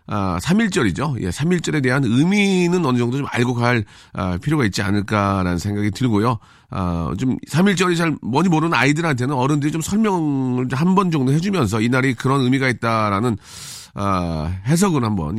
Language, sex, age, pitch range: Korean, male, 40-59, 115-165 Hz